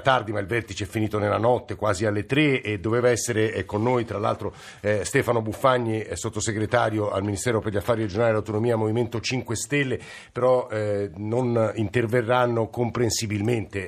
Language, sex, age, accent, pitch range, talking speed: Italian, male, 50-69, native, 105-125 Hz, 160 wpm